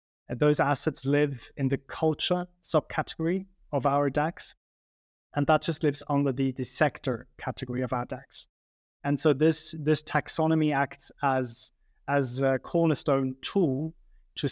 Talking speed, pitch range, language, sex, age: 145 wpm, 130-155 Hz, English, male, 20-39